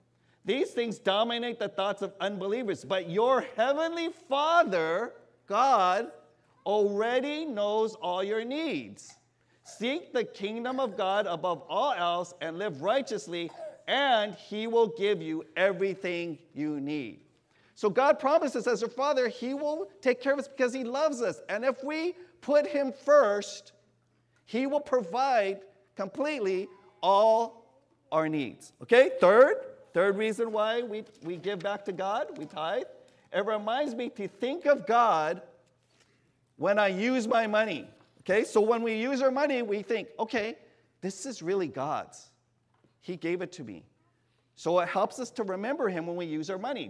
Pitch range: 185-260 Hz